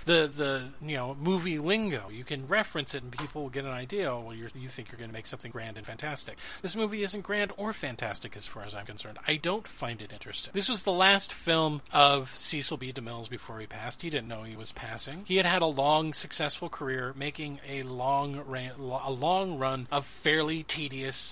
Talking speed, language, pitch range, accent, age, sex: 225 wpm, English, 130-195 Hz, American, 40-59, male